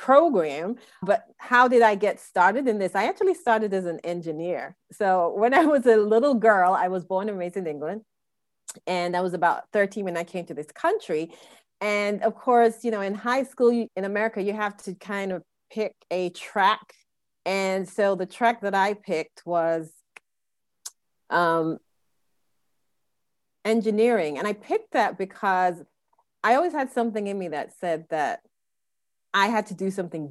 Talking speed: 170 wpm